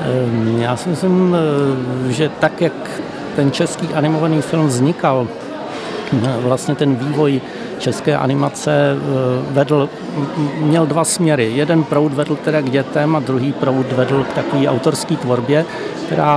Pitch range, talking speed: 125-150 Hz, 130 wpm